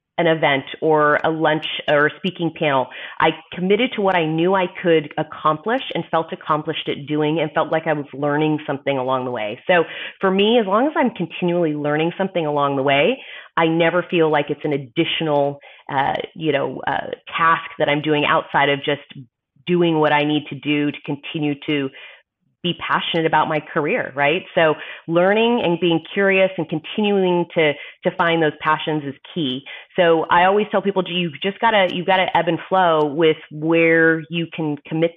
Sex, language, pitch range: female, English, 155-190 Hz